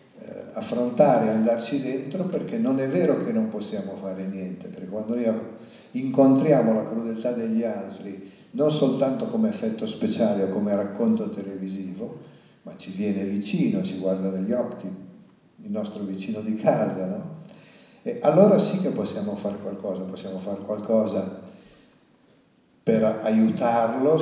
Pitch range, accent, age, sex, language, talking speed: 100-145 Hz, native, 50-69, male, Italian, 140 wpm